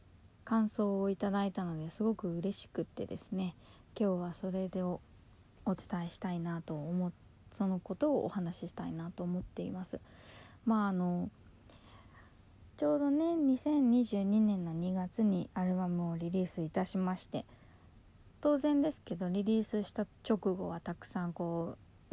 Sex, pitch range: female, 160-205 Hz